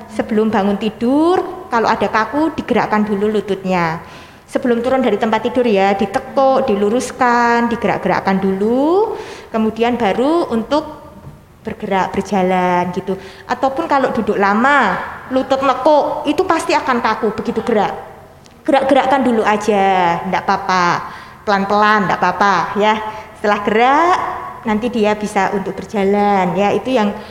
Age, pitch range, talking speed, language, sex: 20-39, 205-260 Hz, 125 wpm, Indonesian, female